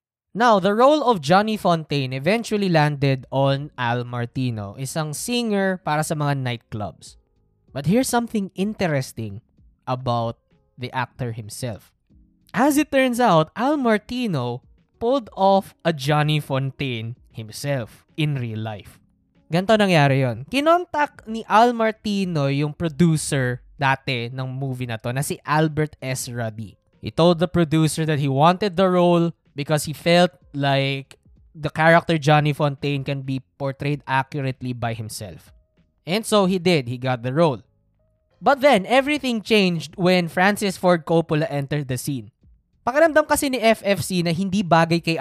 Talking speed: 145 wpm